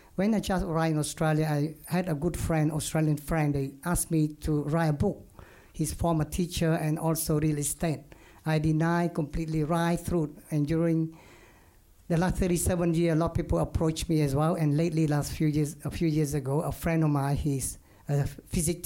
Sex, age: male, 50-69